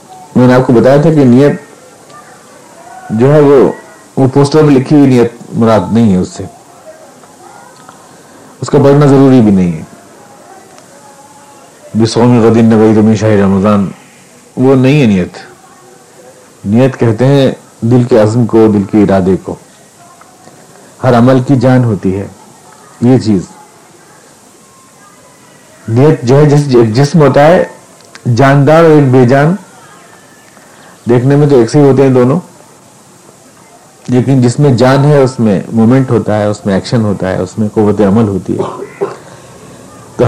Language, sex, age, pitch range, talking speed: Urdu, male, 50-69, 115-145 Hz, 135 wpm